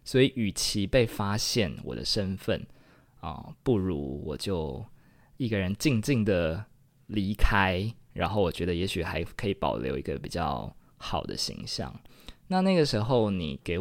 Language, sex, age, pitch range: Chinese, male, 20-39, 95-125 Hz